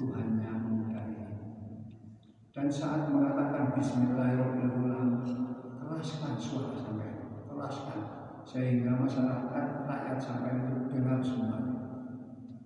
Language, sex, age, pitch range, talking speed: Indonesian, male, 50-69, 115-135 Hz, 80 wpm